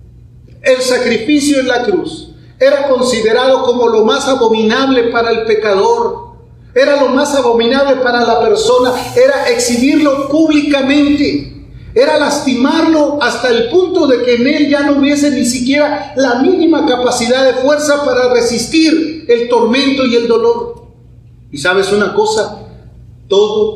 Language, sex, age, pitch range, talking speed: Spanish, male, 40-59, 220-290 Hz, 140 wpm